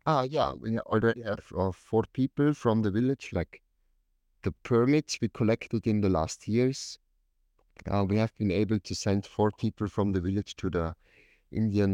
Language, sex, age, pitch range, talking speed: English, male, 50-69, 85-110 Hz, 170 wpm